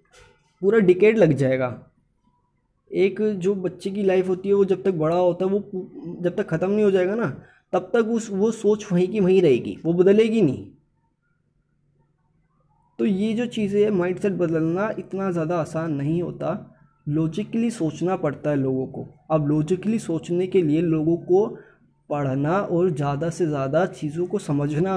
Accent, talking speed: native, 170 wpm